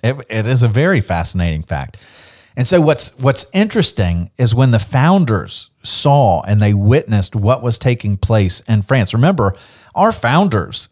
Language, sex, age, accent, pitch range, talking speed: English, male, 40-59, American, 105-135 Hz, 160 wpm